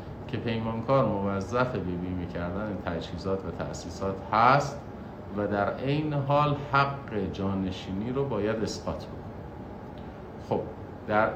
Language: Persian